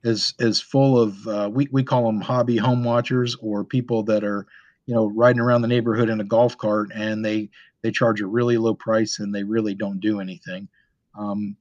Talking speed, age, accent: 210 wpm, 50-69, American